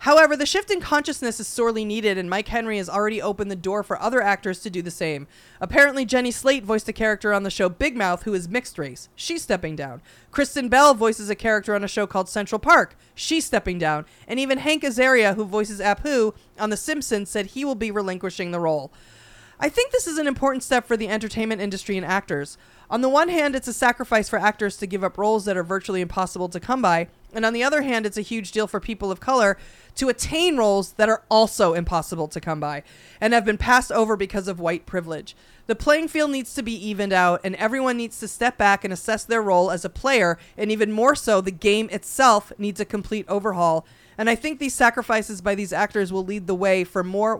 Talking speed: 230 wpm